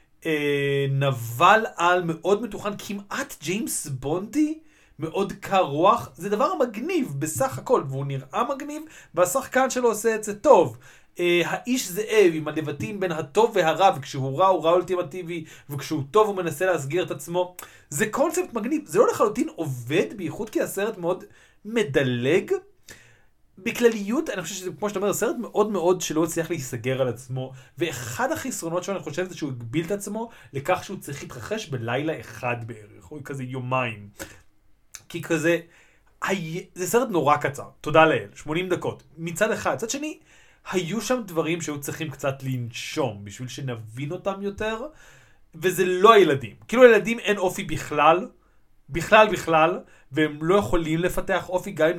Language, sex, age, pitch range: Hebrew, male, 30-49, 145-210 Hz